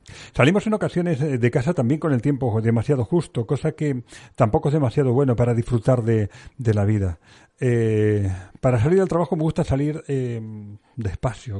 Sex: male